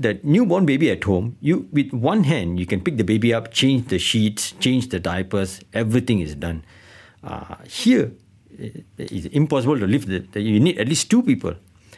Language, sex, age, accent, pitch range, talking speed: English, male, 60-79, Malaysian, 95-120 Hz, 180 wpm